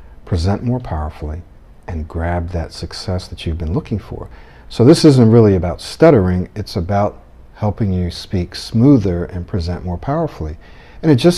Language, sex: English, male